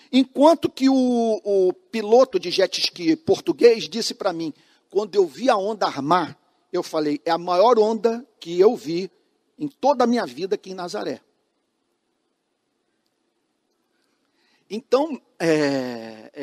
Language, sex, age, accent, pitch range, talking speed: Portuguese, male, 50-69, Brazilian, 200-325 Hz, 130 wpm